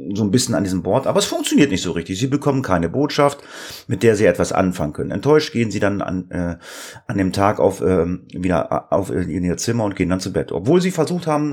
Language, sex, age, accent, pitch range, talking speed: German, male, 30-49, German, 95-125 Hz, 250 wpm